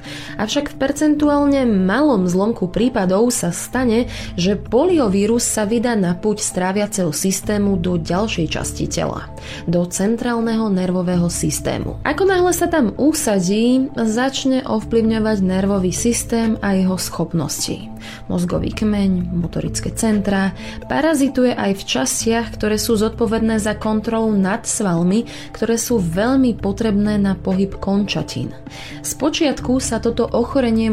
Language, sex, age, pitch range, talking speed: Slovak, female, 20-39, 185-235 Hz, 125 wpm